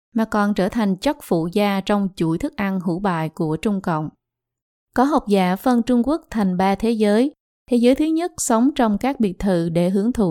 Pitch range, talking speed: 185-235 Hz, 220 wpm